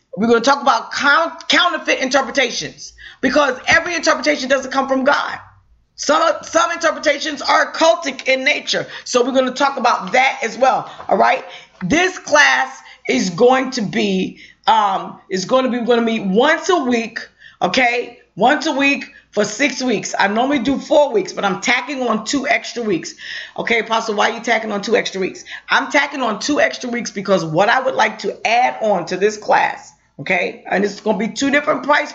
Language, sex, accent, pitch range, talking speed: English, female, American, 210-275 Hz, 190 wpm